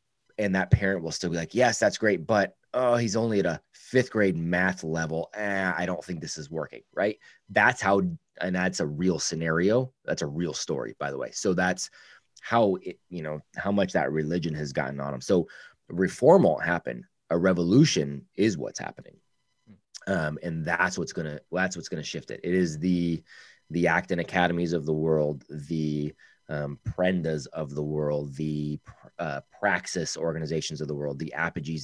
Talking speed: 190 wpm